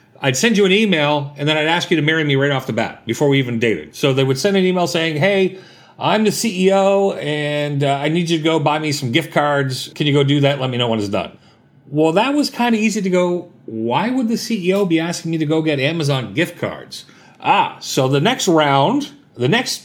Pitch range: 145-200 Hz